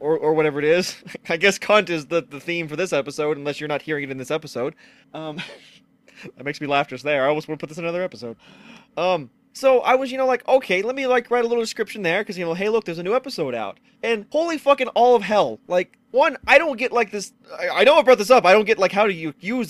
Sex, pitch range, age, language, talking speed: male, 170-245 Hz, 20-39, English, 285 wpm